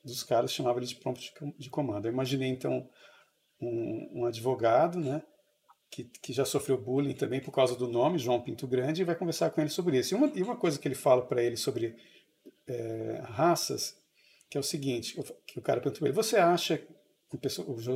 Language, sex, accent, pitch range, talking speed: Portuguese, male, Brazilian, 130-165 Hz, 210 wpm